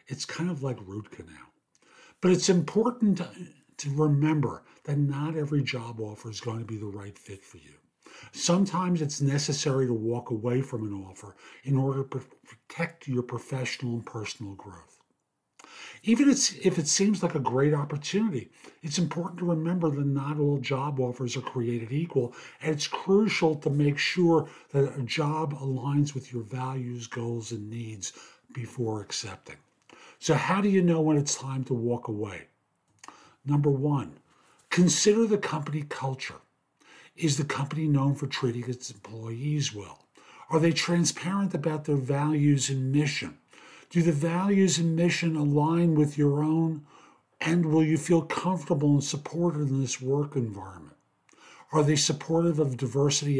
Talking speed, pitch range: 160 wpm, 130-160 Hz